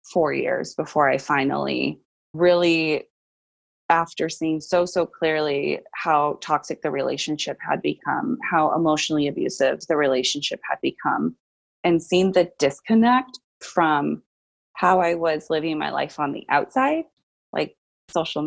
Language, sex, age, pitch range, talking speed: English, female, 20-39, 150-180 Hz, 130 wpm